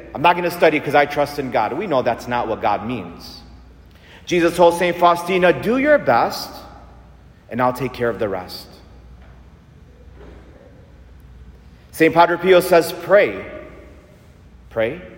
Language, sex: English, male